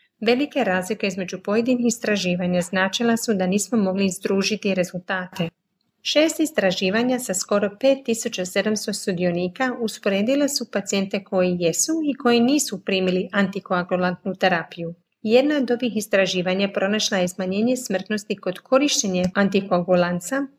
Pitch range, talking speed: 185-230 Hz, 115 wpm